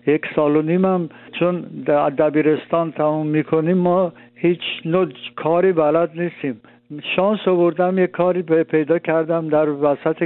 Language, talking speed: Persian, 135 wpm